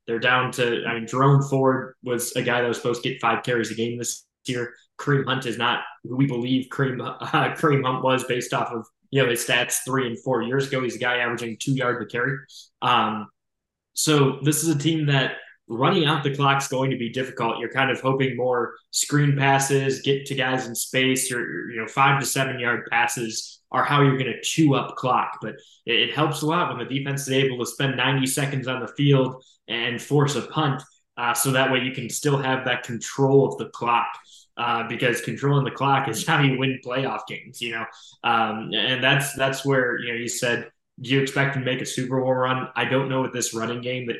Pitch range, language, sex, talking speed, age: 120-140 Hz, English, male, 230 wpm, 10-29